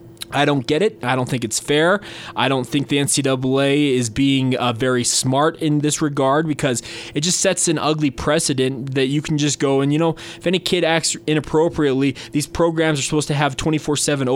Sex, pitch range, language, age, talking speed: male, 120-150 Hz, English, 20-39, 205 wpm